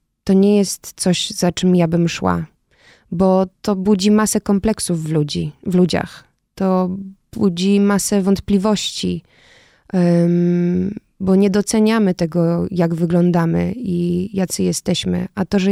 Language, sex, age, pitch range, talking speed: Polish, female, 20-39, 175-195 Hz, 135 wpm